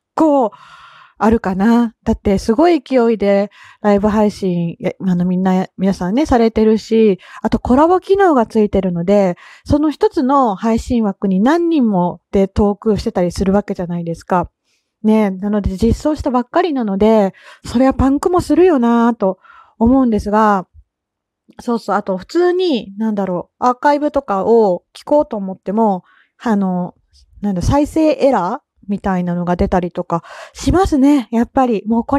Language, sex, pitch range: Japanese, female, 195-255 Hz